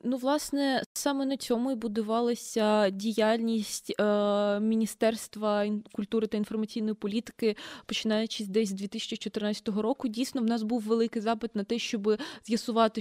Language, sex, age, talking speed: Ukrainian, female, 20-39, 135 wpm